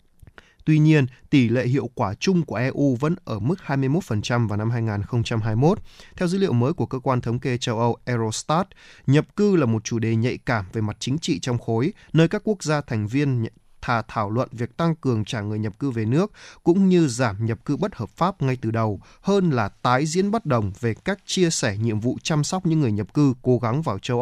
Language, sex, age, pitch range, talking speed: Vietnamese, male, 20-39, 115-150 Hz, 230 wpm